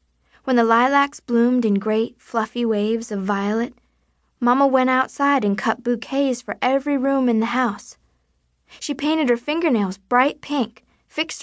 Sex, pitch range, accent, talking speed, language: female, 205-260 Hz, American, 150 wpm, English